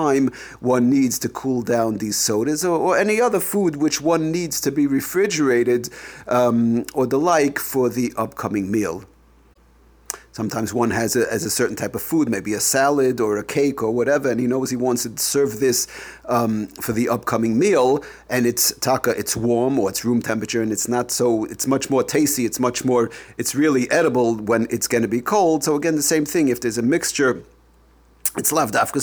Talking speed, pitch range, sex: 205 wpm, 115-140 Hz, male